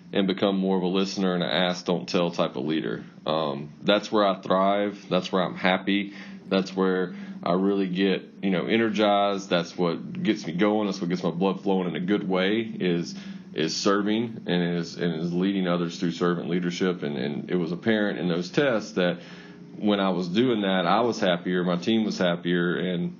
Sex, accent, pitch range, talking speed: male, American, 85-100 Hz, 205 wpm